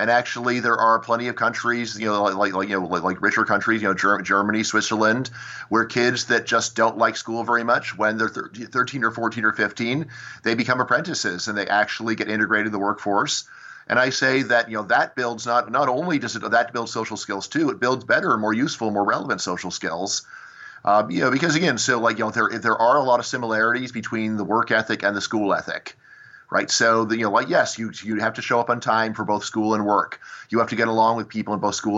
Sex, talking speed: male, 245 wpm